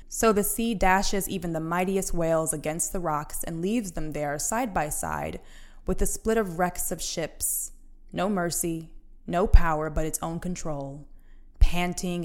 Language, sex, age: English, female, 20-39